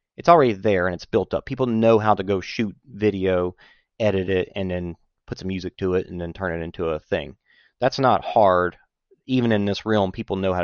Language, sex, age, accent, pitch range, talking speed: English, male, 30-49, American, 90-110 Hz, 225 wpm